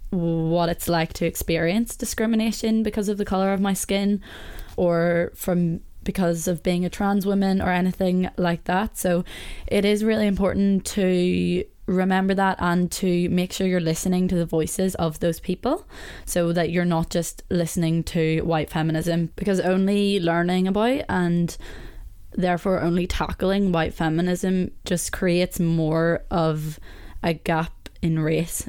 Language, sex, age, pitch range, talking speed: English, female, 20-39, 170-190 Hz, 150 wpm